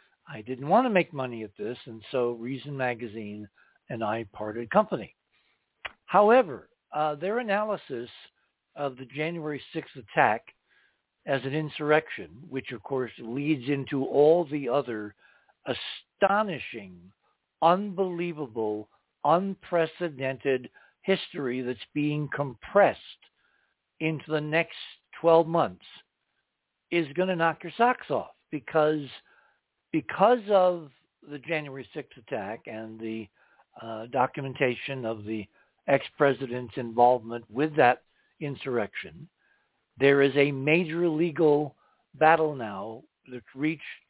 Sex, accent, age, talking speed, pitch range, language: male, American, 60-79, 110 wpm, 120-160 Hz, English